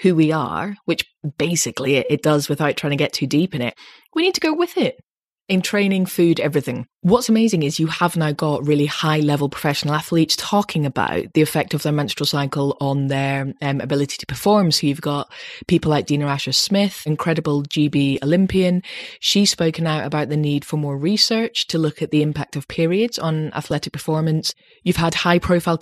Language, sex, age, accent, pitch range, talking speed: English, female, 20-39, British, 150-195 Hz, 190 wpm